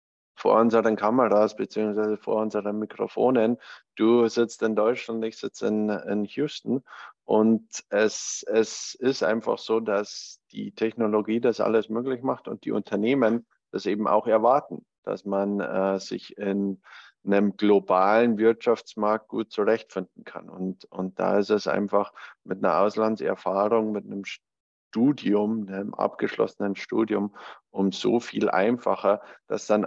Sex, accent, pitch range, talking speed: male, German, 100-110 Hz, 135 wpm